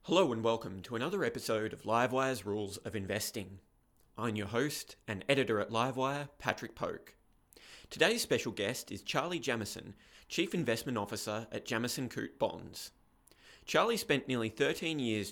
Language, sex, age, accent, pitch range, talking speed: English, male, 20-39, Australian, 105-130 Hz, 150 wpm